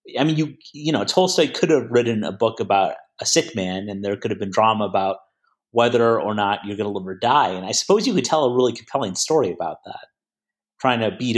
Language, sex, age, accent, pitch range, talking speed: English, male, 30-49, American, 105-140 Hz, 245 wpm